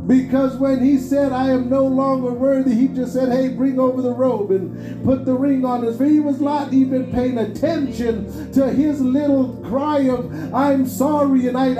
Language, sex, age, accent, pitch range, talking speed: English, male, 50-69, American, 225-270 Hz, 195 wpm